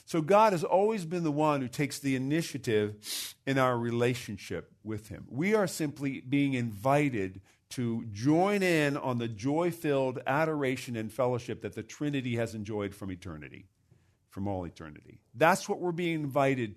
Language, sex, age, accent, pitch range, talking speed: English, male, 50-69, American, 110-145 Hz, 160 wpm